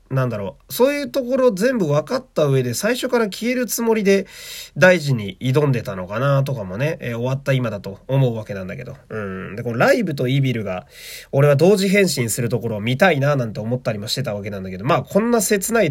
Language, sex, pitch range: Japanese, male, 120-185 Hz